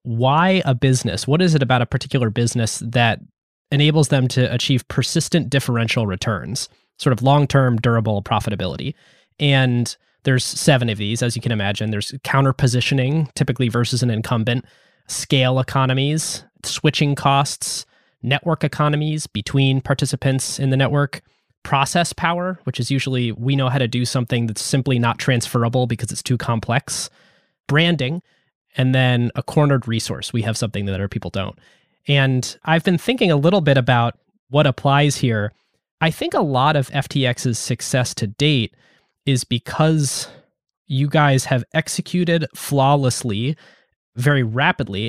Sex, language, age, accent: male, English, 20-39, American